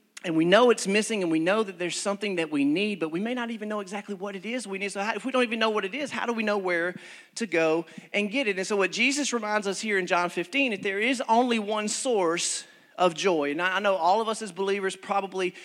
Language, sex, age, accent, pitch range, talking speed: English, male, 40-59, American, 170-215 Hz, 275 wpm